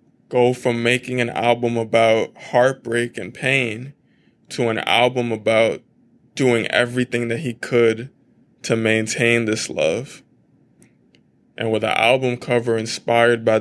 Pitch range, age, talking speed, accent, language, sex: 115-125 Hz, 20-39, 130 wpm, American, English, male